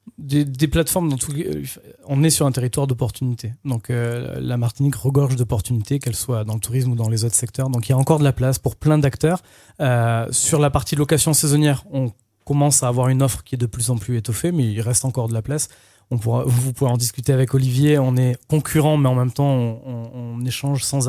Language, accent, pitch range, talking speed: French, French, 120-145 Hz, 240 wpm